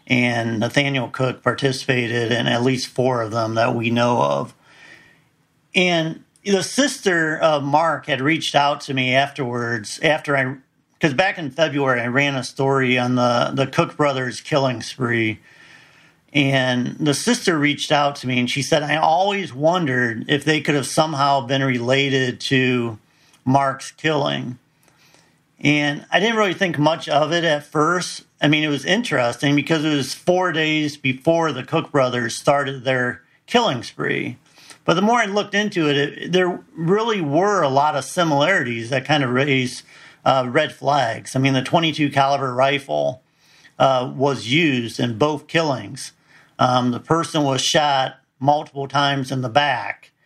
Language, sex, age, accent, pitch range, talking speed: English, male, 50-69, American, 130-155 Hz, 165 wpm